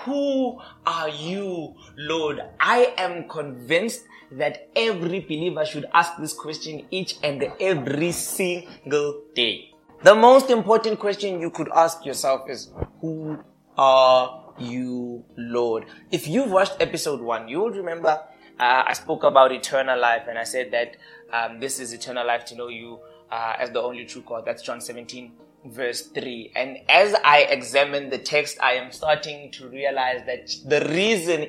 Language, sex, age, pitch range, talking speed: English, male, 20-39, 130-180 Hz, 160 wpm